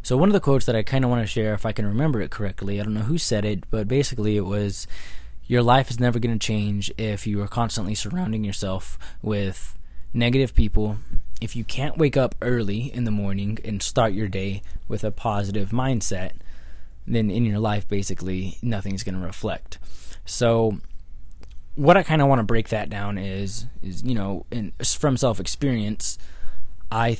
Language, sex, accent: English, male, American